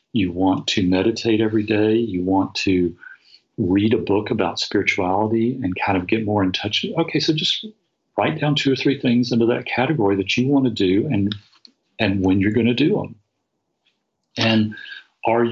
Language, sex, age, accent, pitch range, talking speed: English, male, 40-59, American, 100-125 Hz, 185 wpm